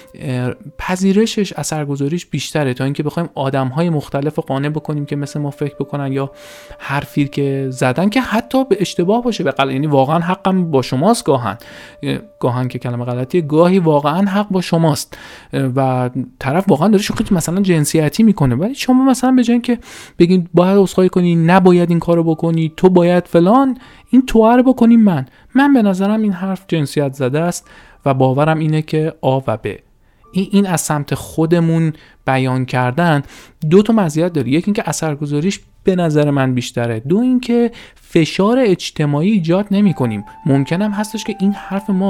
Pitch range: 140-195 Hz